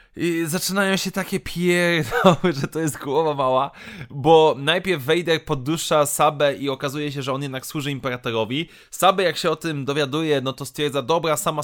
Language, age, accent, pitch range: Polish, 20-39, native, 140-175 Hz